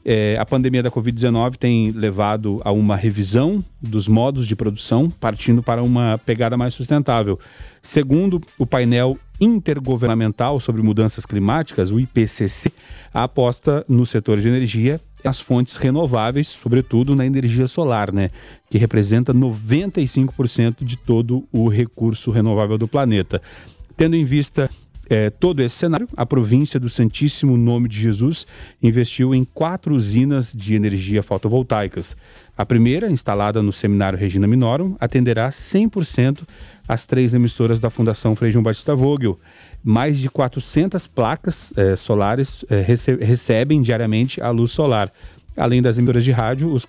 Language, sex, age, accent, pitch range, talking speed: Portuguese, male, 40-59, Brazilian, 110-135 Hz, 140 wpm